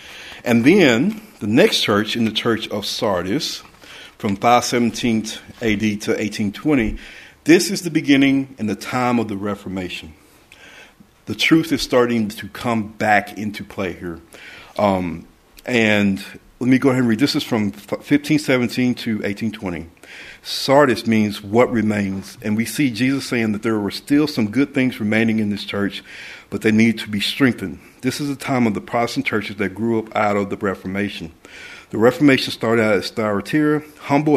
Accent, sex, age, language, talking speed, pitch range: American, male, 50-69, English, 170 wpm, 100-130 Hz